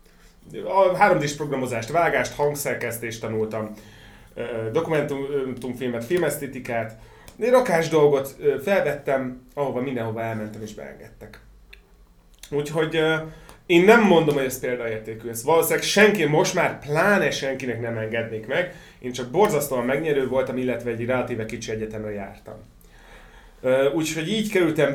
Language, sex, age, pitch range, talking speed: Hungarian, male, 30-49, 110-145 Hz, 115 wpm